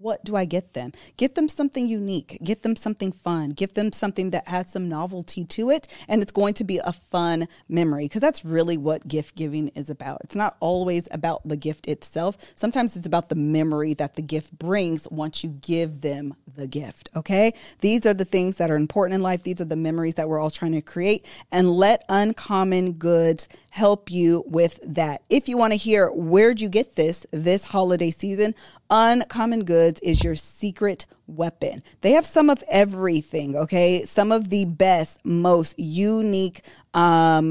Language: English